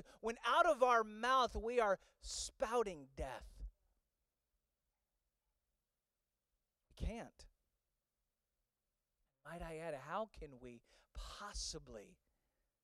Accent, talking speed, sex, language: American, 85 wpm, male, English